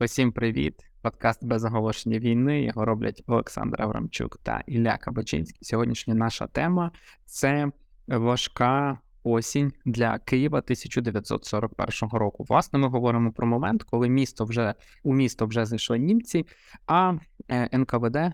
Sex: male